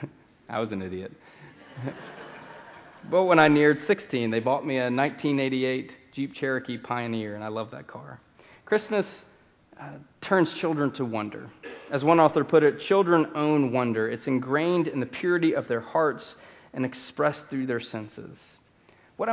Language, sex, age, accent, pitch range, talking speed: English, male, 30-49, American, 125-160 Hz, 155 wpm